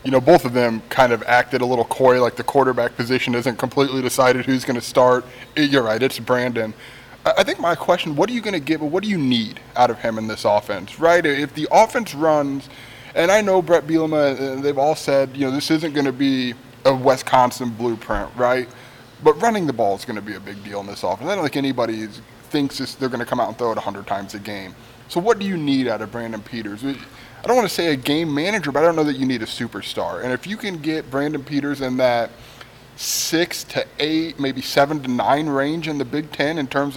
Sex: male